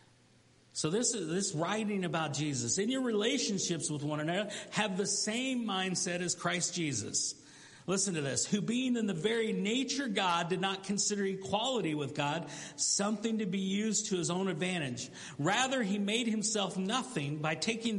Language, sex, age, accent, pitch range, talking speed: English, male, 50-69, American, 180-240 Hz, 170 wpm